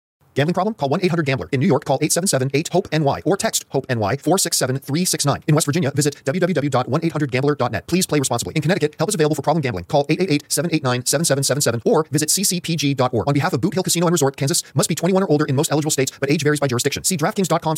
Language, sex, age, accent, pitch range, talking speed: English, male, 40-59, American, 140-185 Hz, 195 wpm